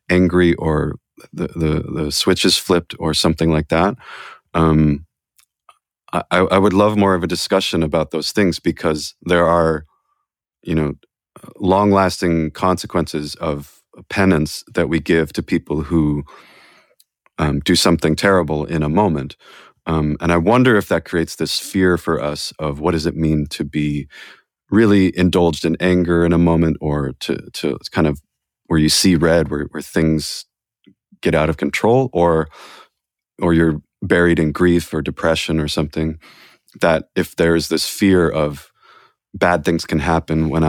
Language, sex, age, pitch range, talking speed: English, male, 30-49, 75-90 Hz, 160 wpm